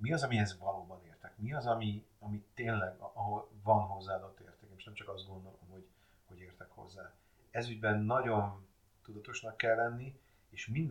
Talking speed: 175 wpm